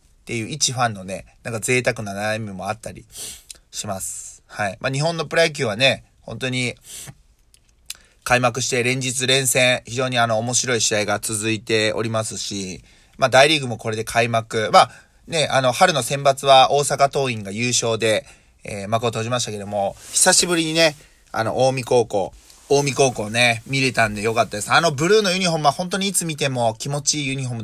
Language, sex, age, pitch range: Japanese, male, 20-39, 110-165 Hz